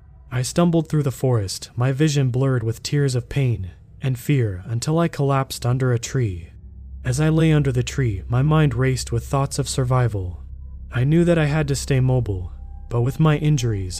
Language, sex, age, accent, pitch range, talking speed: English, male, 20-39, American, 110-140 Hz, 195 wpm